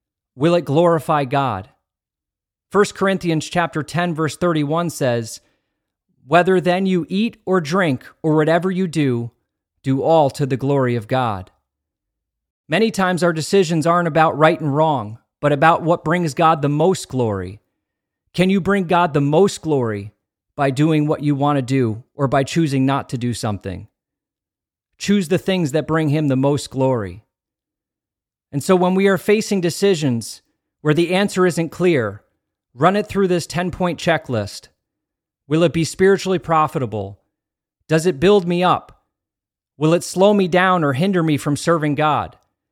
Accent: American